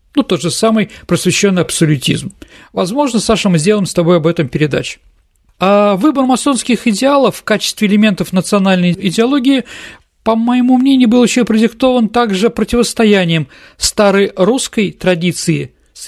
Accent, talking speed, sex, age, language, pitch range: native, 135 wpm, male, 40-59, Russian, 165-235 Hz